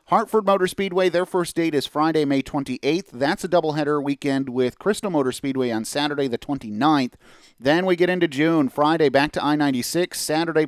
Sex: male